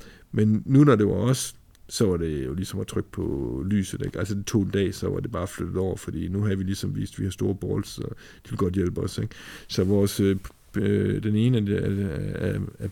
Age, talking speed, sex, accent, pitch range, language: 50-69, 240 wpm, male, native, 95-105 Hz, Danish